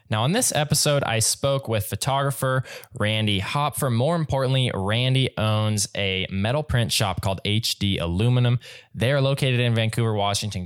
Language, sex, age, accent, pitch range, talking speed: English, male, 10-29, American, 100-135 Hz, 145 wpm